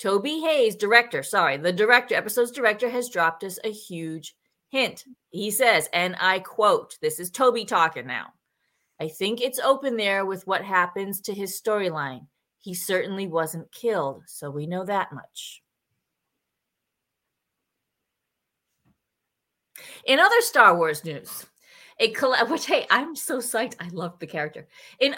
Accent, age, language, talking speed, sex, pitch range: American, 30-49, English, 145 wpm, female, 170-245 Hz